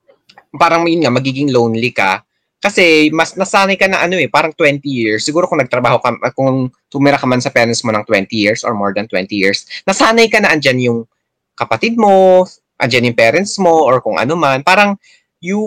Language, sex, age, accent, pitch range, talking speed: Filipino, male, 20-39, native, 110-155 Hz, 200 wpm